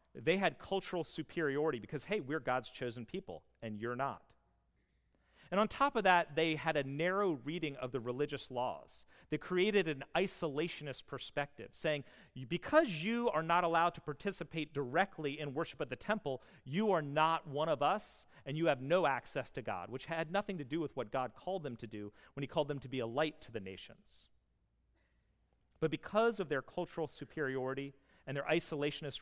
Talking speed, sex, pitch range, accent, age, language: 185 wpm, male, 105-160 Hz, American, 40-59, English